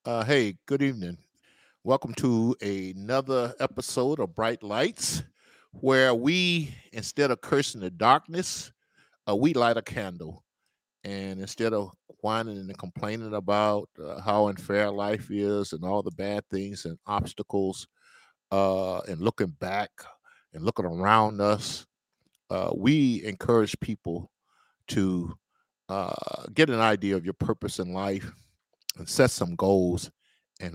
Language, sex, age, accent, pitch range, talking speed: English, male, 50-69, American, 95-115 Hz, 135 wpm